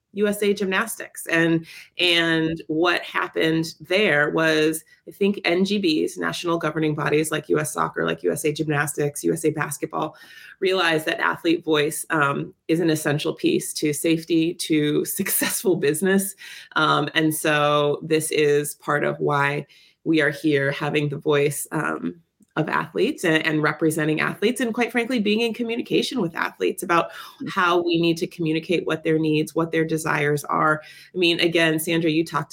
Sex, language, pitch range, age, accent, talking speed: female, English, 150-180 Hz, 30-49, American, 155 wpm